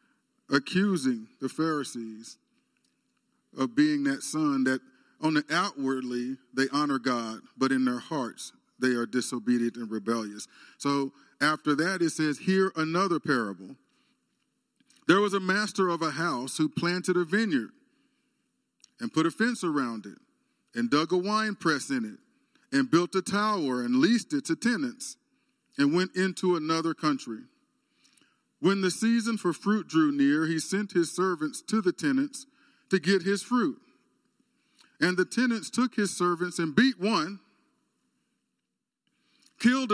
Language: English